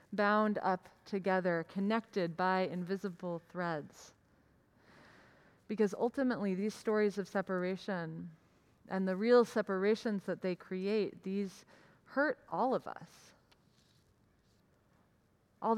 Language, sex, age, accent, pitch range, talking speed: English, female, 30-49, American, 170-205 Hz, 100 wpm